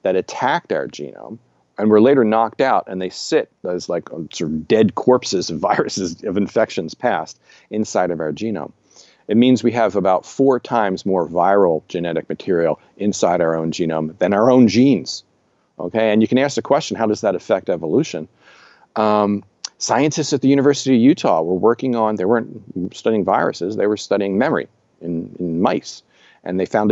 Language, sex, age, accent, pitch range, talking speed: English, male, 40-59, American, 90-125 Hz, 185 wpm